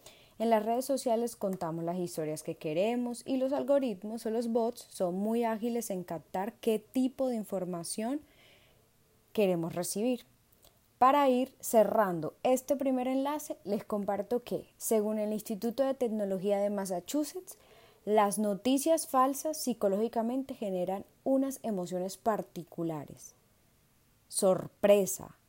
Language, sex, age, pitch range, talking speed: Spanish, female, 20-39, 180-235 Hz, 120 wpm